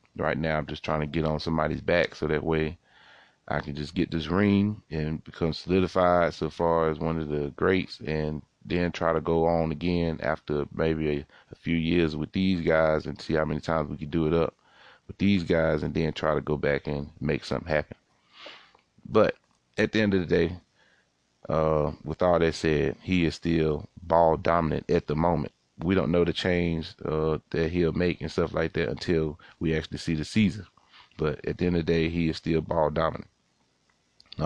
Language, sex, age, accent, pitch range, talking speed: English, male, 30-49, American, 75-85 Hz, 205 wpm